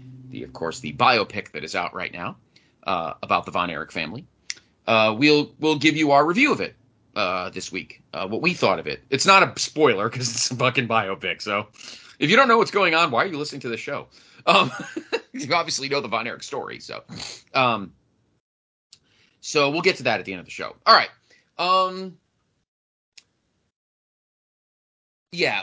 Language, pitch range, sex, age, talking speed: English, 105-155 Hz, male, 30-49, 195 wpm